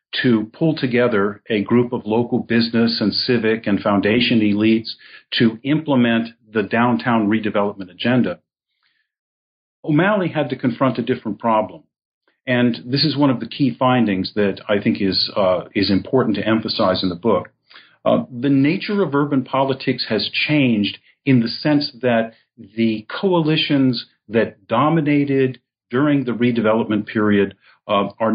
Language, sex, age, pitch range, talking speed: English, male, 50-69, 110-135 Hz, 145 wpm